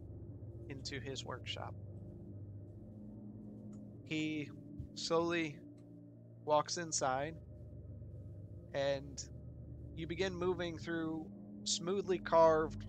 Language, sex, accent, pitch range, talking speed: English, male, American, 105-165 Hz, 65 wpm